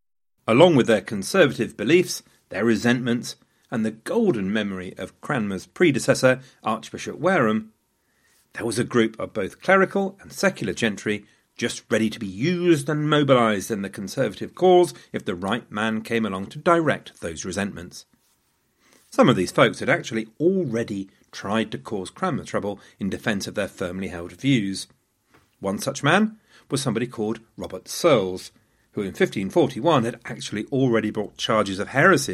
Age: 40-59